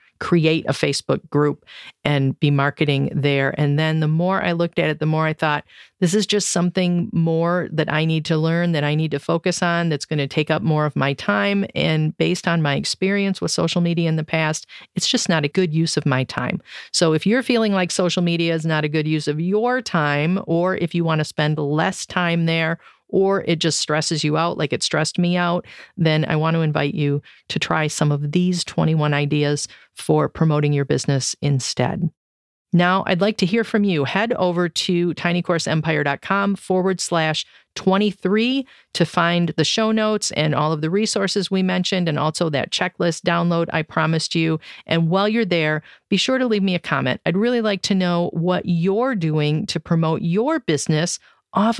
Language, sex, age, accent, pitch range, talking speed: English, female, 40-59, American, 155-200 Hz, 205 wpm